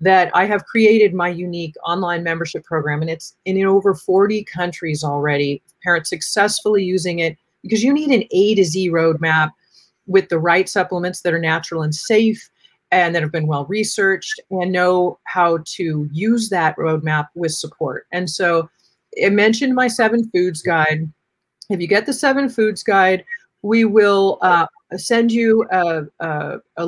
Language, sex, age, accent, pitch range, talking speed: English, female, 30-49, American, 160-200 Hz, 165 wpm